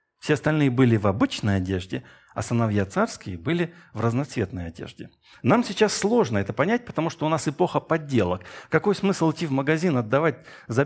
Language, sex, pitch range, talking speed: Russian, male, 115-165 Hz, 170 wpm